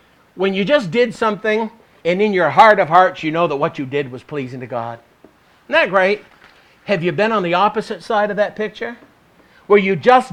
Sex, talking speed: male, 215 wpm